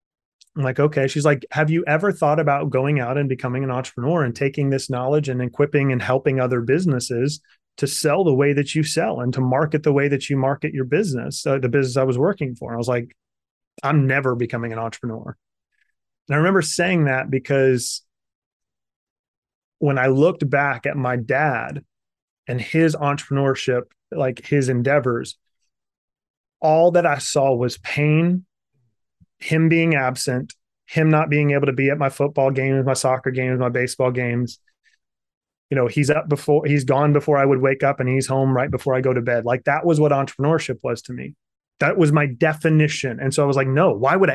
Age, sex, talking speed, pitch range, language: 30-49, male, 195 wpm, 130-150 Hz, English